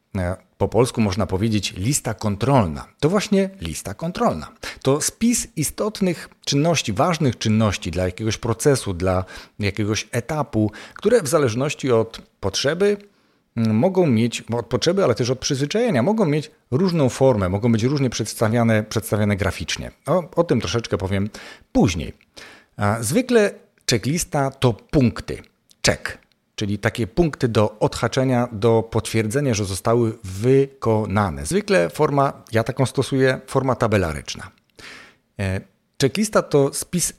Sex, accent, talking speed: male, native, 125 wpm